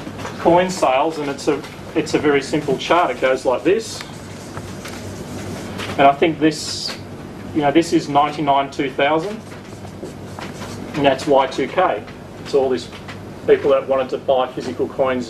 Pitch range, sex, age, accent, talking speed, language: 135-170 Hz, male, 30-49, Australian, 145 wpm, English